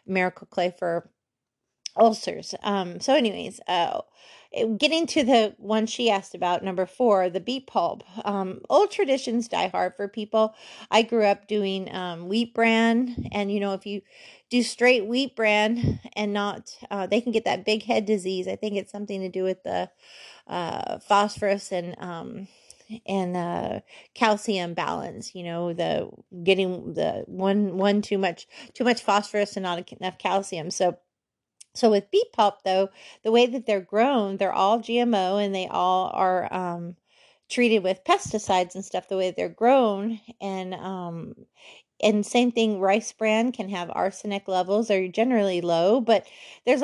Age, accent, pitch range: 30-49, American, 185-225 Hz